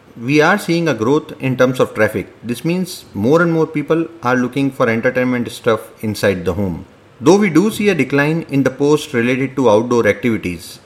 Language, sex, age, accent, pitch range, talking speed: English, male, 30-49, Indian, 110-145 Hz, 200 wpm